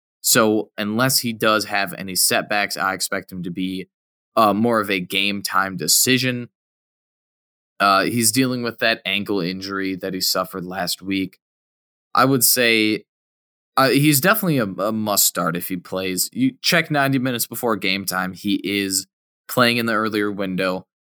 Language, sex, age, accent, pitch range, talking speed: English, male, 20-39, American, 95-130 Hz, 160 wpm